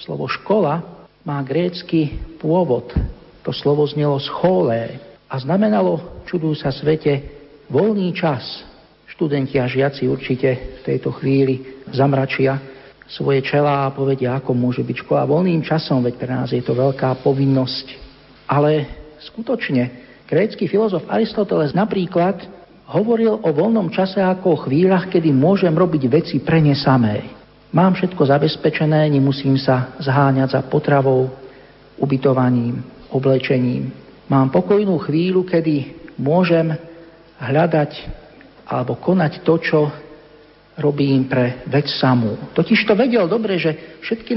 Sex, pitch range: male, 135-170 Hz